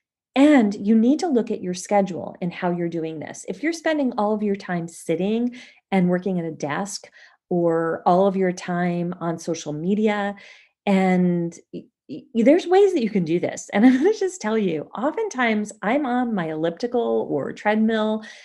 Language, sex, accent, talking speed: English, female, American, 180 wpm